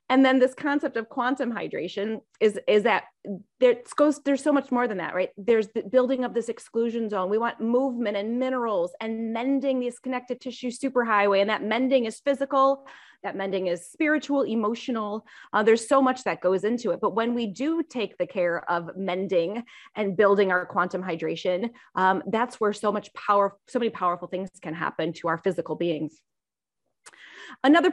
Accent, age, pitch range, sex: American, 30-49, 190-250 Hz, female